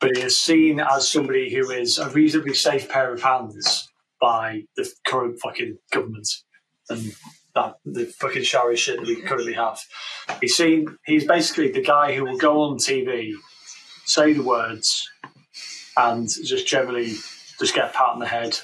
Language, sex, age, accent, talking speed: English, male, 30-49, British, 170 wpm